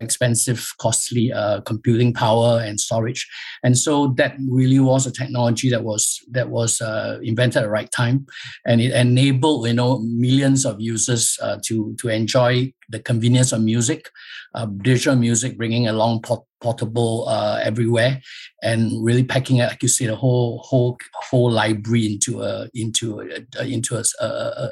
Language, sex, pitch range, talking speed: English, male, 115-130 Hz, 165 wpm